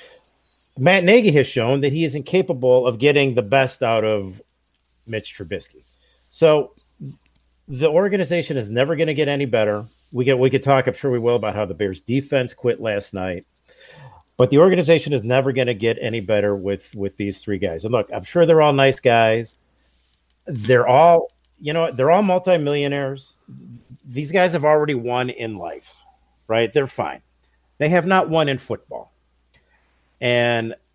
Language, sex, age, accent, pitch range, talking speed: English, male, 50-69, American, 100-145 Hz, 175 wpm